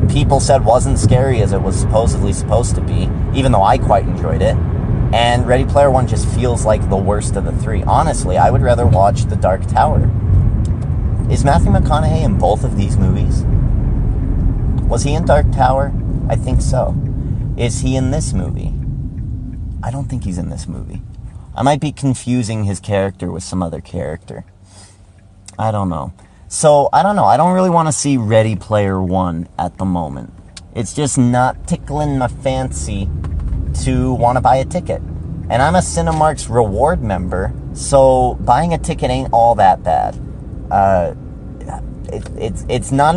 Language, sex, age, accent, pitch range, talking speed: English, male, 30-49, American, 95-130 Hz, 175 wpm